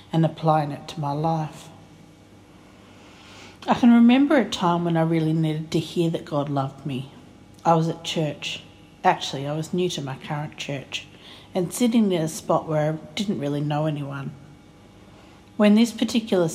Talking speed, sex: 170 wpm, female